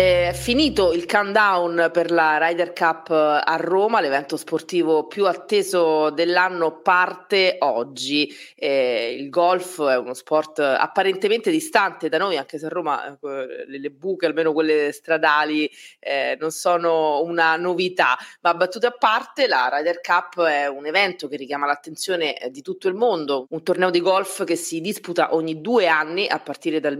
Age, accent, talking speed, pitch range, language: 30-49, native, 155 wpm, 155-200 Hz, Italian